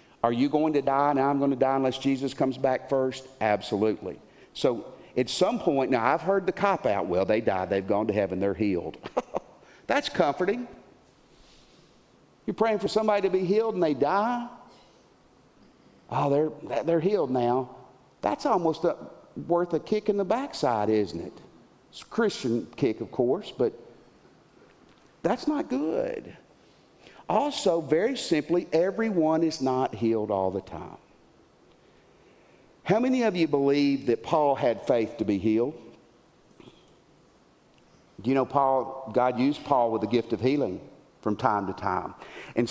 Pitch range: 120-195 Hz